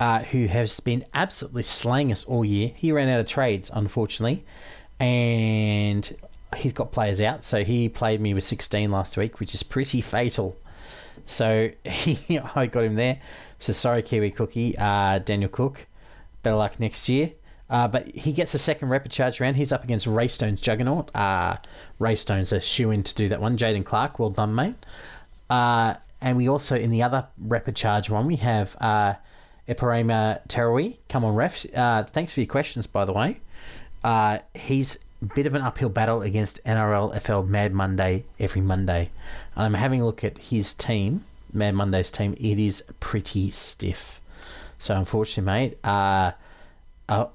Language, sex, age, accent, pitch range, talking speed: English, male, 30-49, Australian, 100-125 Hz, 170 wpm